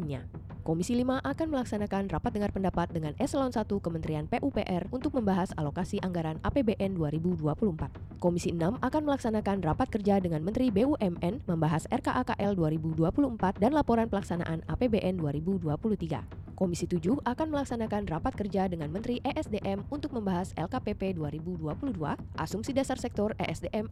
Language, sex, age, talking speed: Indonesian, female, 20-39, 130 wpm